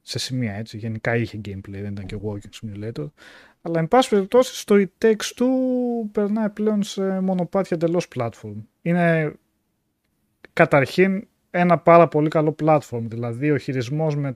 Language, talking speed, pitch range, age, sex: Greek, 145 wpm, 125-185 Hz, 30-49, male